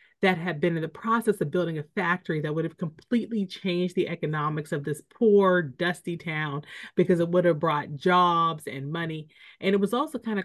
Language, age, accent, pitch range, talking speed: English, 30-49, American, 160-205 Hz, 205 wpm